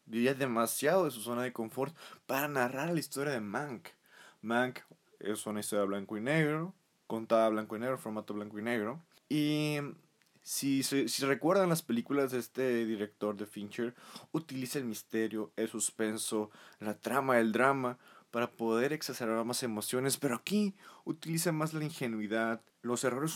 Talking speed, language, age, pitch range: 155 wpm, Spanish, 20-39, 110-150 Hz